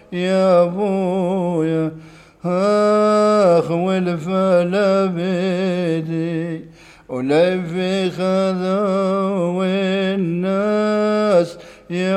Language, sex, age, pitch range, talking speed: English, male, 50-69, 170-190 Hz, 50 wpm